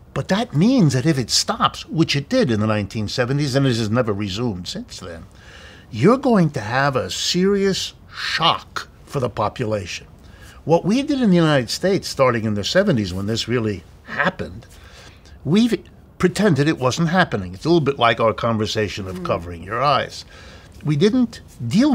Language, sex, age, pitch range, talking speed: English, male, 60-79, 105-165 Hz, 175 wpm